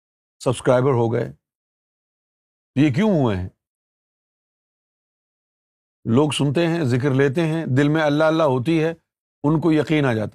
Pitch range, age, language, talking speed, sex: 150-225 Hz, 50-69, Urdu, 140 wpm, male